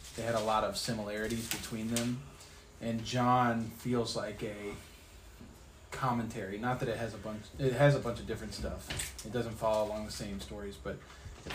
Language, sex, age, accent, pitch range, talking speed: English, male, 30-49, American, 95-125 Hz, 185 wpm